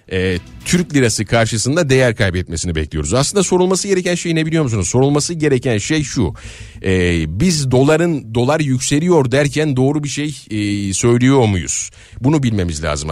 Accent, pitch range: native, 100-140 Hz